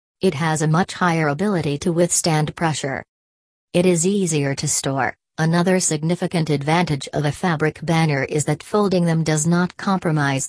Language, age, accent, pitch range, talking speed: English, 40-59, American, 150-180 Hz, 160 wpm